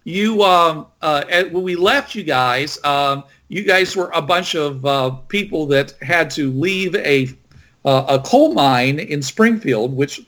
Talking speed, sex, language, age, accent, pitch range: 175 wpm, male, English, 50-69, American, 130-165 Hz